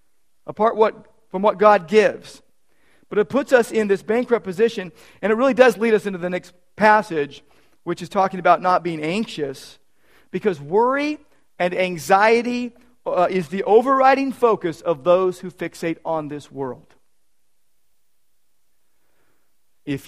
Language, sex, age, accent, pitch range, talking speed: English, male, 50-69, American, 135-205 Hz, 140 wpm